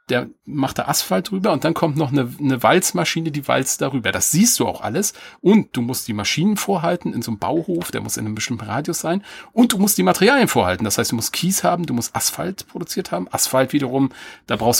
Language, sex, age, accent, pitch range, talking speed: German, male, 40-59, German, 115-170 Hz, 235 wpm